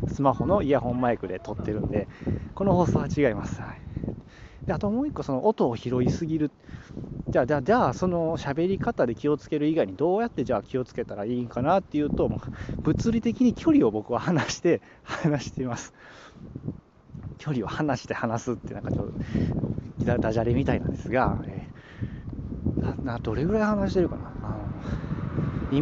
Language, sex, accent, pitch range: Japanese, male, native, 115-180 Hz